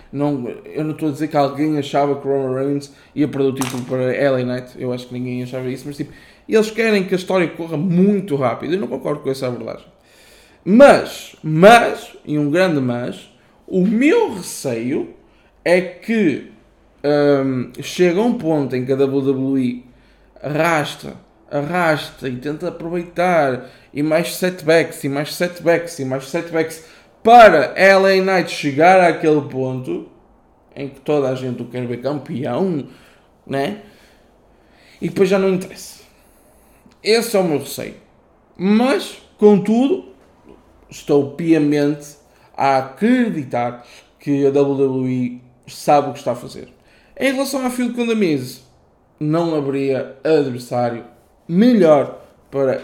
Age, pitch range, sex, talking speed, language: 20-39, 130-175 Hz, male, 140 wpm, Portuguese